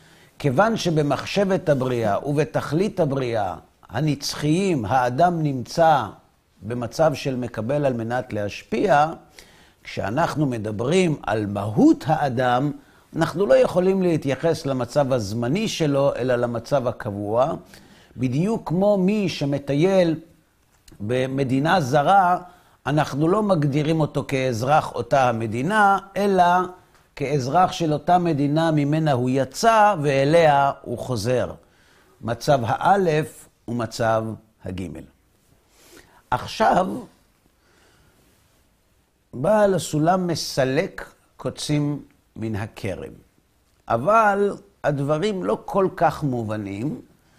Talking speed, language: 90 wpm, Hebrew